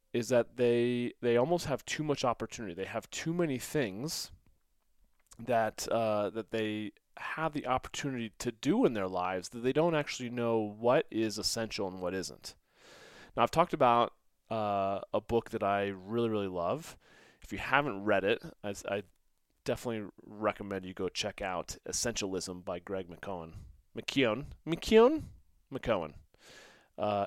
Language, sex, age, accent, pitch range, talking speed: English, male, 30-49, American, 100-130 Hz, 155 wpm